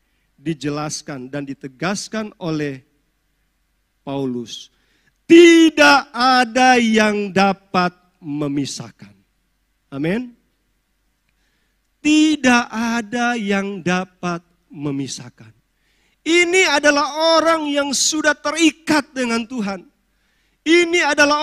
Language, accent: Indonesian, native